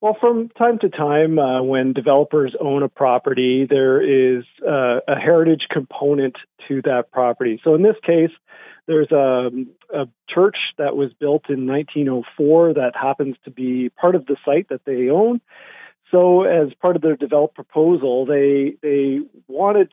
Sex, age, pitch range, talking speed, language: male, 40-59, 130-155 Hz, 165 wpm, English